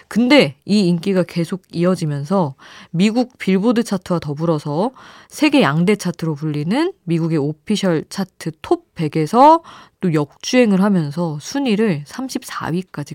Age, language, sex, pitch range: 20-39, Korean, female, 145-205 Hz